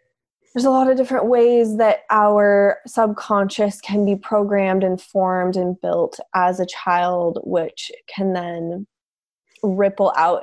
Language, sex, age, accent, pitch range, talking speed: English, female, 20-39, American, 180-210 Hz, 140 wpm